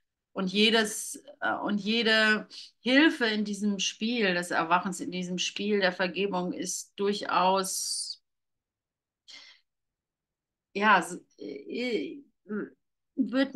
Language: German